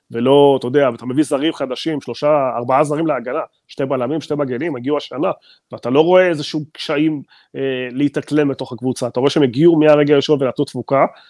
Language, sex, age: Hebrew, male, 30-49